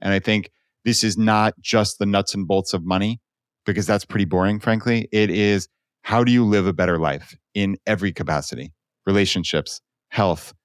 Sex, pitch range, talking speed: male, 95-115 Hz, 180 wpm